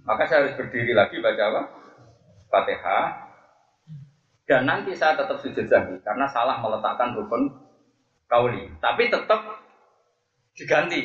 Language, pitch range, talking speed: Malay, 130-190 Hz, 120 wpm